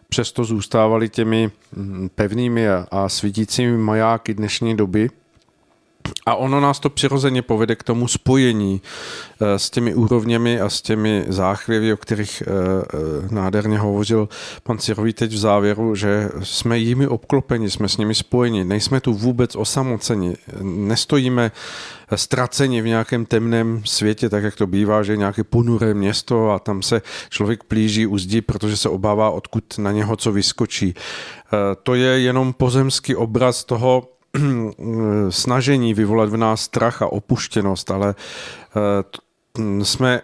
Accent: native